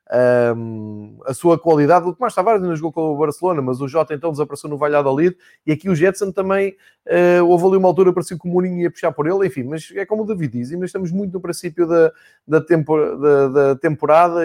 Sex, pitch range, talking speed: male, 140-175 Hz, 235 wpm